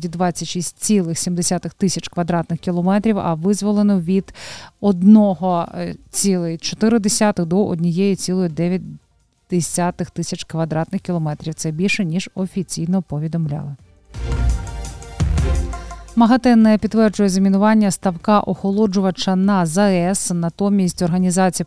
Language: Ukrainian